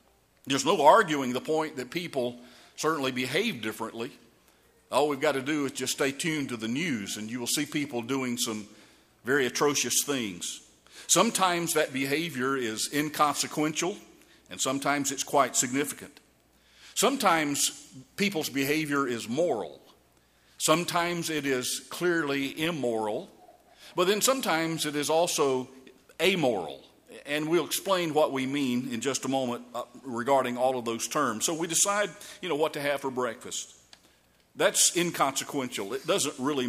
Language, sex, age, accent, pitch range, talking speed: English, male, 50-69, American, 120-155 Hz, 145 wpm